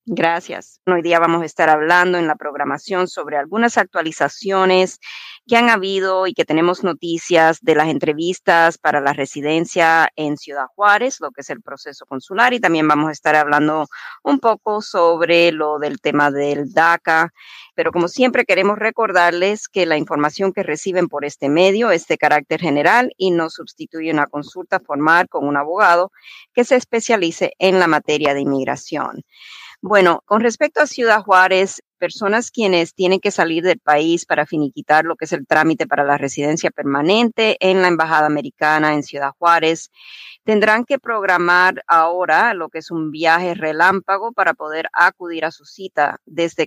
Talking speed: 170 wpm